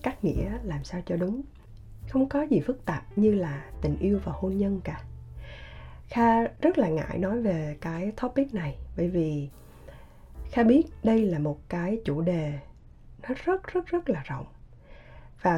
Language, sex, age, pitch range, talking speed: Vietnamese, female, 20-39, 150-215 Hz, 175 wpm